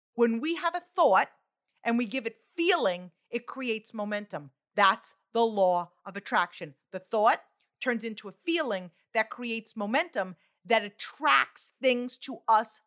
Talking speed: 150 wpm